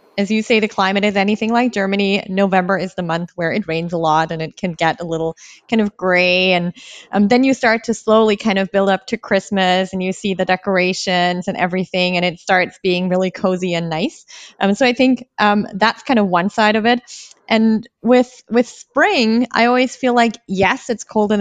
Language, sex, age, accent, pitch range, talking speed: German, female, 20-39, American, 185-225 Hz, 220 wpm